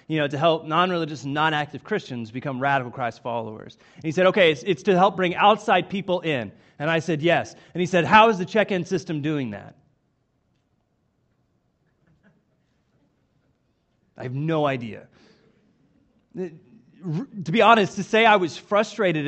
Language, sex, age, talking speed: English, male, 30-49, 155 wpm